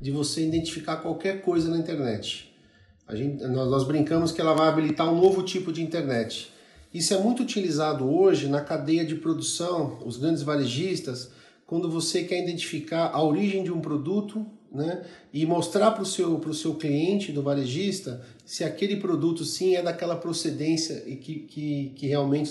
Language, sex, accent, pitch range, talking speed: Portuguese, male, Brazilian, 145-185 Hz, 170 wpm